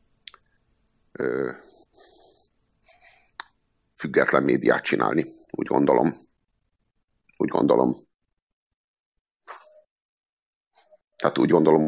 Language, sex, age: Hungarian, male, 50-69